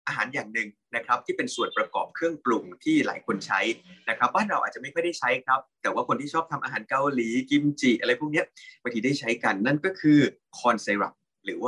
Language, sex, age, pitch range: Thai, male, 20-39, 120-165 Hz